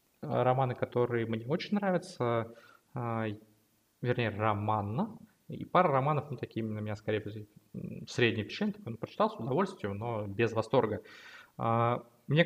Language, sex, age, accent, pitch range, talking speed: Russian, male, 20-39, native, 110-145 Hz, 115 wpm